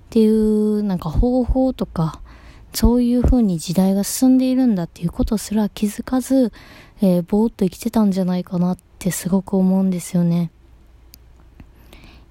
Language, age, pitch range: Japanese, 20-39, 180-215 Hz